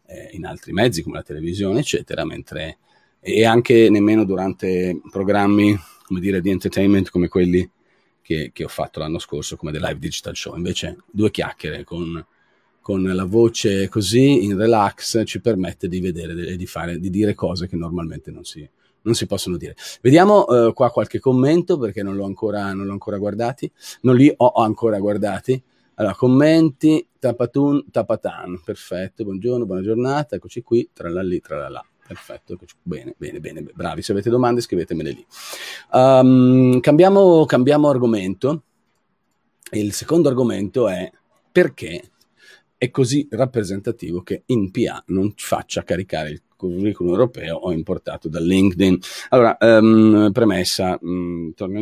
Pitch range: 95-120 Hz